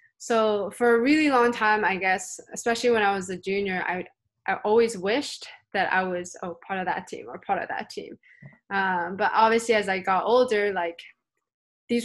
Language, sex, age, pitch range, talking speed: English, female, 20-39, 185-220 Hz, 200 wpm